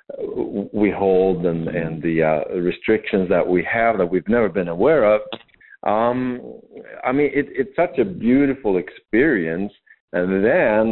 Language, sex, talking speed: English, male, 145 wpm